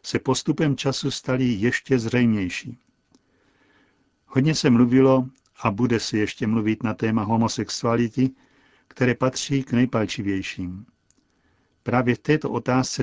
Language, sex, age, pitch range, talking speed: Czech, male, 60-79, 110-130 Hz, 115 wpm